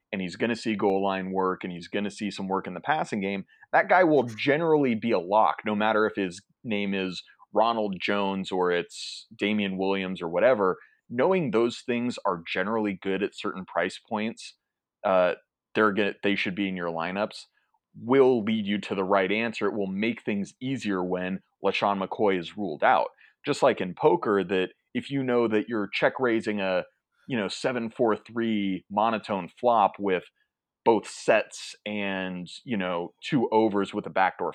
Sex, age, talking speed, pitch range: male, 30-49, 180 wpm, 95-115 Hz